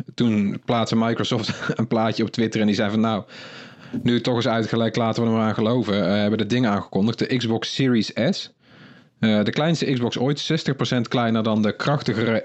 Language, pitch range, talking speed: Dutch, 110-125 Hz, 195 wpm